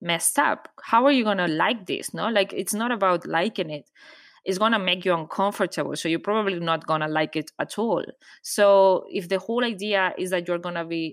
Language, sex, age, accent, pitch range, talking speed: English, female, 20-39, Spanish, 155-200 Hz, 210 wpm